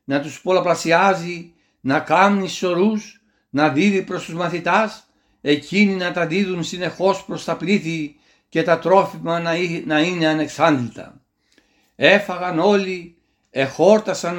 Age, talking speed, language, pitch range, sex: 60-79, 115 wpm, Greek, 155-180 Hz, male